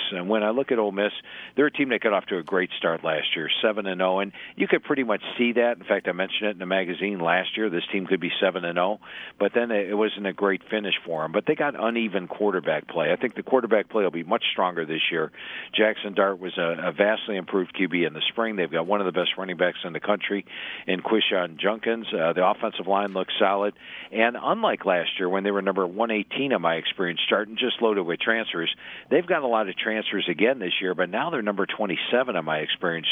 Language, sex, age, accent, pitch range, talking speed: English, male, 50-69, American, 90-105 Hz, 245 wpm